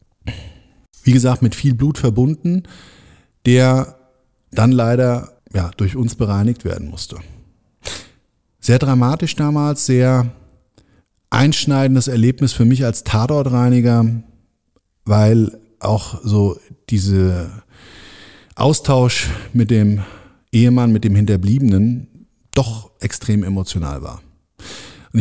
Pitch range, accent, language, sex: 105-125 Hz, German, German, male